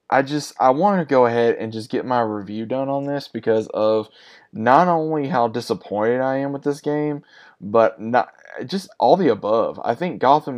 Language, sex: English, male